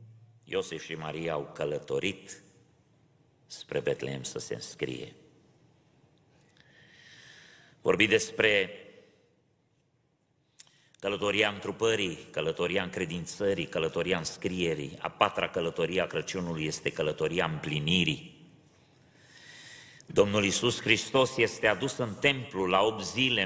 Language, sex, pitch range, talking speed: Romanian, male, 100-155 Hz, 90 wpm